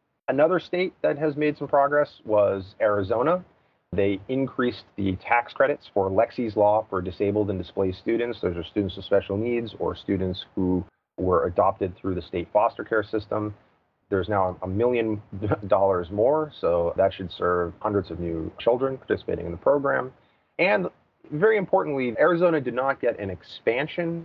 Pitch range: 95-115 Hz